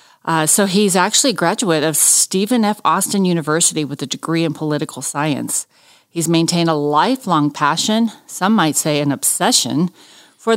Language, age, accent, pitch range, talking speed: English, 50-69, American, 155-200 Hz, 160 wpm